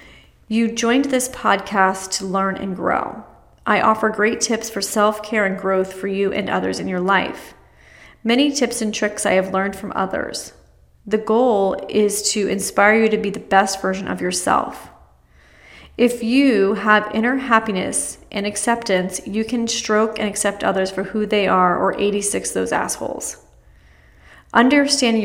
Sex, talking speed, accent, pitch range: female, 160 wpm, American, 190-220 Hz